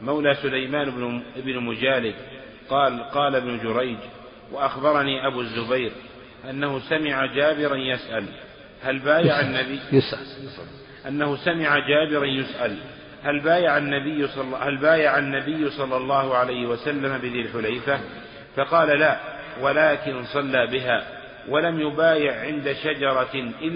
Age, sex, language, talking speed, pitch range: 50-69, male, Arabic, 115 wpm, 130-150 Hz